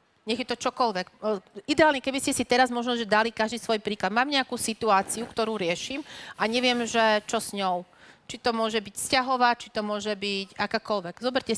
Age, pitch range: 40-59, 210-245 Hz